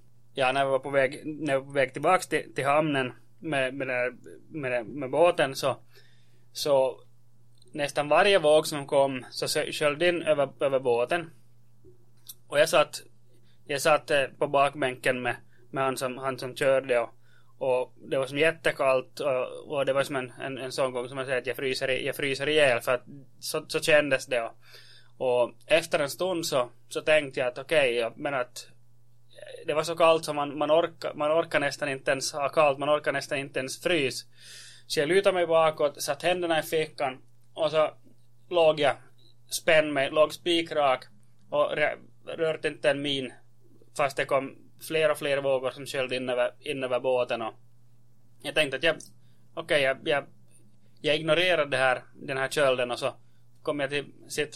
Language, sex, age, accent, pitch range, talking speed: Swedish, male, 20-39, Finnish, 120-150 Hz, 185 wpm